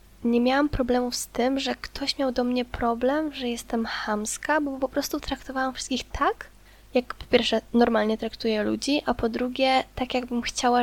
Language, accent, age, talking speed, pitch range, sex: Polish, native, 10-29, 175 wpm, 225-255 Hz, female